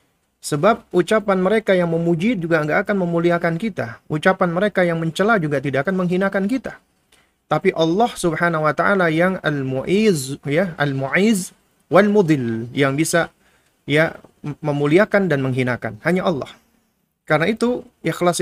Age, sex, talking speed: 30-49, male, 130 wpm